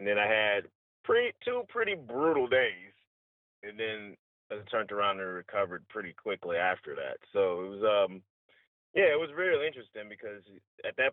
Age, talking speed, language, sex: 30-49, 175 wpm, English, male